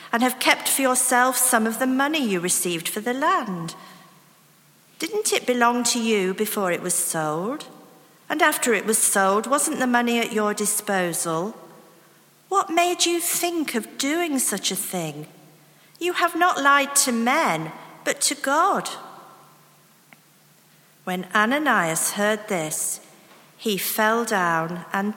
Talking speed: 145 wpm